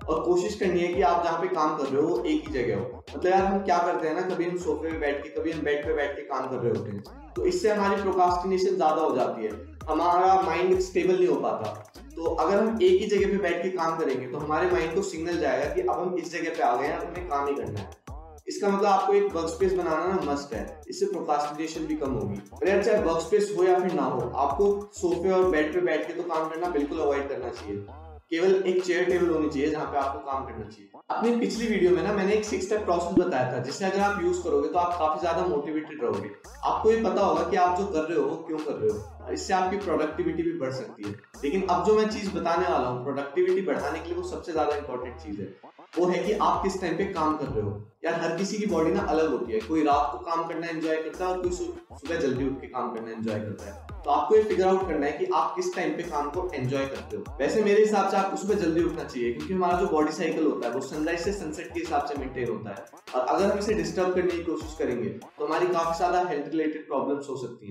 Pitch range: 150-195 Hz